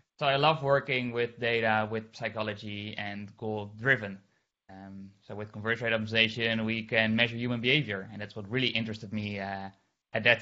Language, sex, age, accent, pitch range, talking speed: English, male, 20-39, Dutch, 110-125 Hz, 175 wpm